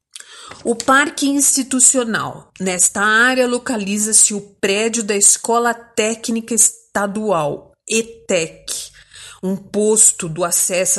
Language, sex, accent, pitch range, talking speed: Portuguese, female, Brazilian, 190-240 Hz, 95 wpm